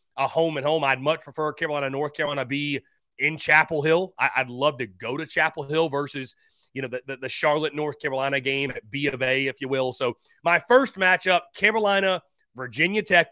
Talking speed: 190 wpm